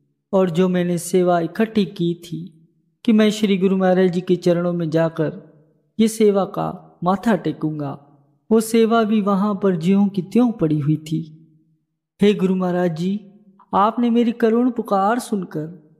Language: Hindi